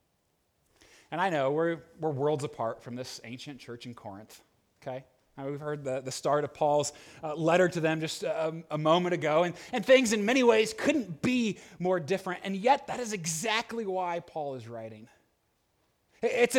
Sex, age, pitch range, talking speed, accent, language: male, 30-49, 155-230 Hz, 185 wpm, American, English